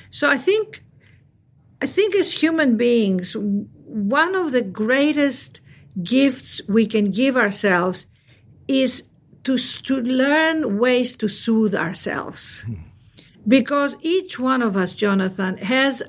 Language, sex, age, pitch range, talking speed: English, female, 50-69, 200-265 Hz, 120 wpm